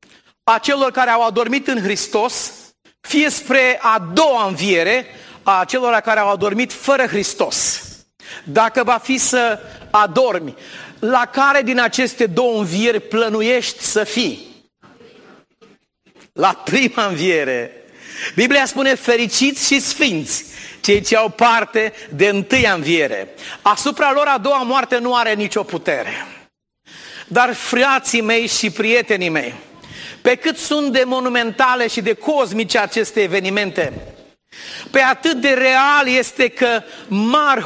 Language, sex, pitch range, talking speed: Romanian, male, 220-270 Hz, 125 wpm